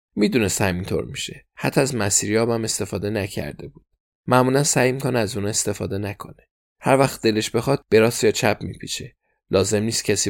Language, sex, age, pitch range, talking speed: Persian, male, 20-39, 95-115 Hz, 170 wpm